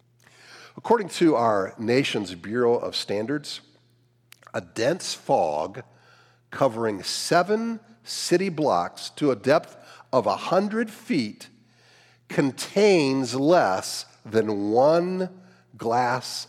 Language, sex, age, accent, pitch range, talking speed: English, male, 50-69, American, 120-145 Hz, 95 wpm